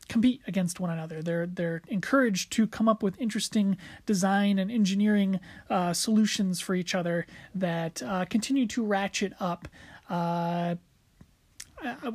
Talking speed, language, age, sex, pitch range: 135 wpm, English, 30-49, male, 175-210 Hz